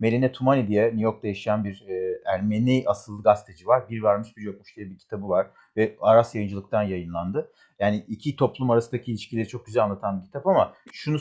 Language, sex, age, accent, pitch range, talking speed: Turkish, male, 40-59, native, 115-170 Hz, 185 wpm